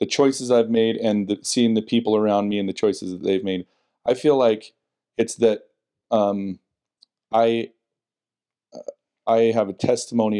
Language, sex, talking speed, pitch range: English, male, 155 wpm, 95-115 Hz